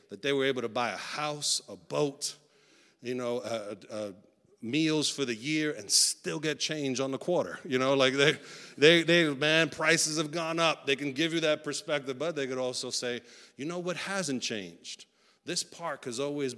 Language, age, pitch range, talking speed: English, 50-69, 125-175 Hz, 205 wpm